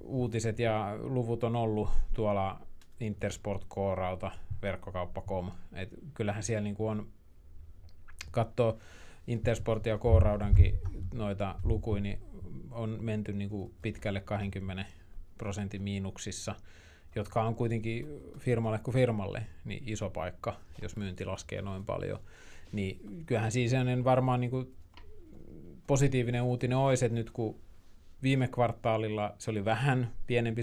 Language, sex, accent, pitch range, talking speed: Finnish, male, native, 95-115 Hz, 115 wpm